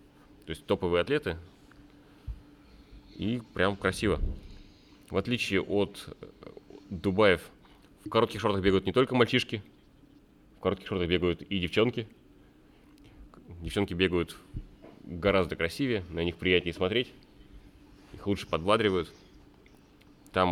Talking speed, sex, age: 105 wpm, male, 30-49